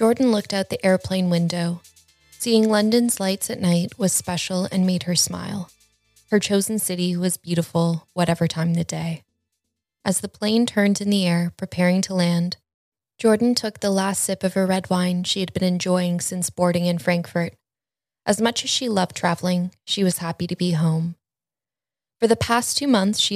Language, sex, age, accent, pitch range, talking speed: English, female, 20-39, American, 170-195 Hz, 180 wpm